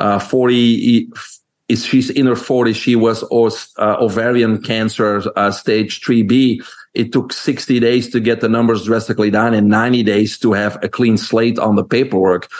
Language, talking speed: English, 175 wpm